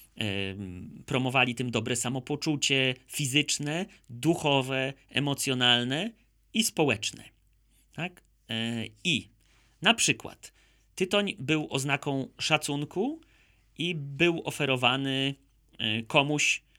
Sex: male